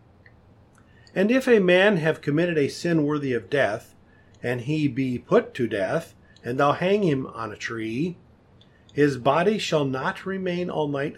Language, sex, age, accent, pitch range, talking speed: English, male, 50-69, American, 110-155 Hz, 165 wpm